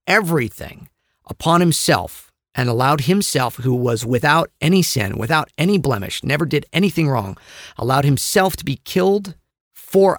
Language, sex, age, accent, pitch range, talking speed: English, male, 40-59, American, 115-155 Hz, 140 wpm